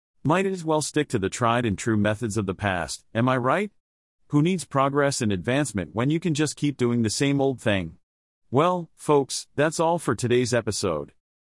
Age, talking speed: 40-59, 200 wpm